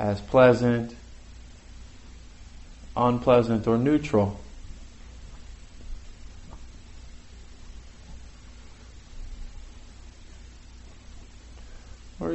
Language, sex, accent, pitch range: English, male, American, 80-115 Hz